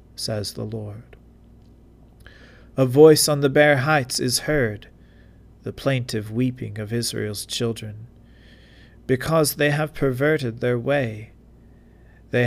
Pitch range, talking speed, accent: 110-135 Hz, 115 wpm, American